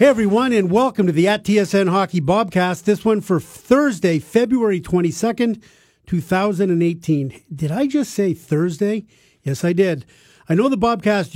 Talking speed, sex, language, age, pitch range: 155 wpm, male, English, 50-69, 155-200 Hz